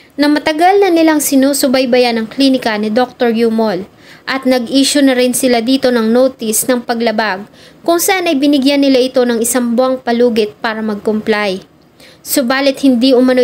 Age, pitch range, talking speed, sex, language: 20-39, 230-275 Hz, 155 wpm, female, English